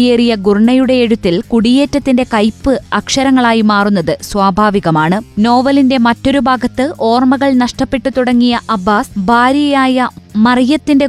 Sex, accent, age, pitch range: female, native, 20-39, 210-260 Hz